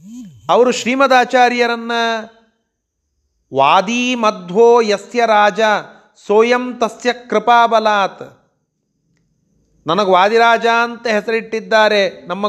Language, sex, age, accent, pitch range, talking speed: Kannada, male, 30-49, native, 185-230 Hz, 70 wpm